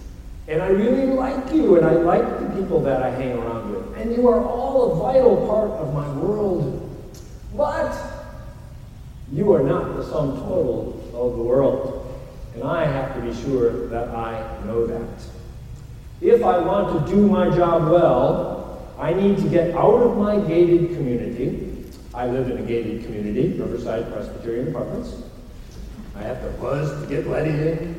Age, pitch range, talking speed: 40-59, 125-190 Hz, 170 wpm